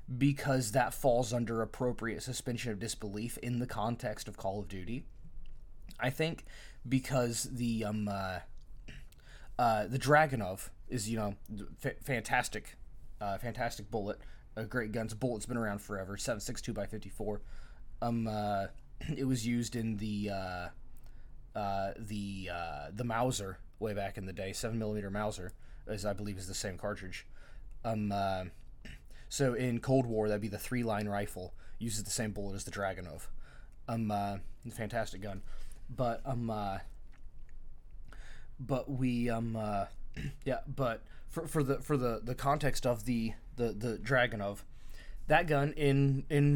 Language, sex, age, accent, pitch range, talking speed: English, male, 20-39, American, 100-130 Hz, 150 wpm